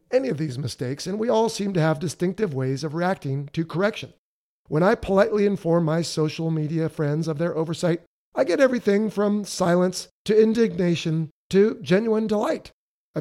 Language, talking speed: English, 175 wpm